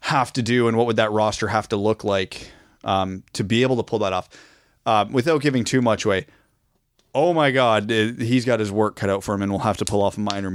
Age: 30-49